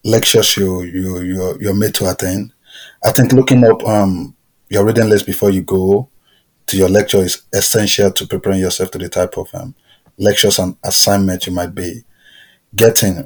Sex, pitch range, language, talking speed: male, 95-110 Hz, English, 175 wpm